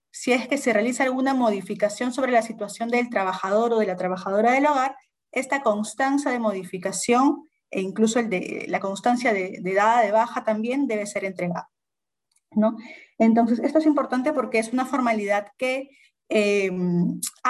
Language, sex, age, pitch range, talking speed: Spanish, female, 30-49, 205-255 Hz, 165 wpm